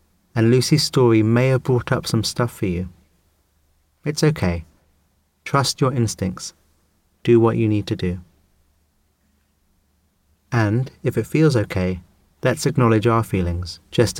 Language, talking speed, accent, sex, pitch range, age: English, 135 wpm, British, male, 80-115 Hz, 30-49